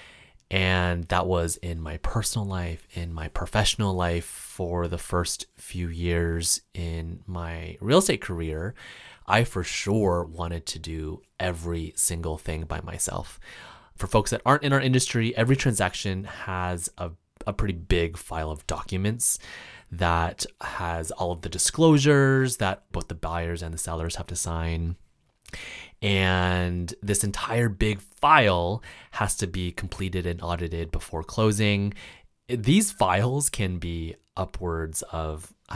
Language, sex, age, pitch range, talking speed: English, male, 30-49, 85-105 Hz, 145 wpm